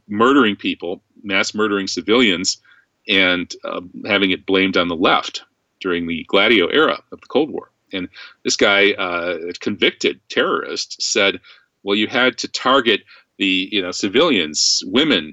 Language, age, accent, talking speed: English, 40-59, American, 155 wpm